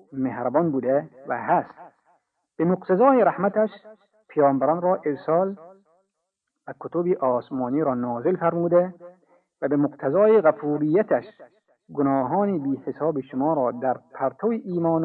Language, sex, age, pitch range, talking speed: Persian, male, 50-69, 135-185 Hz, 110 wpm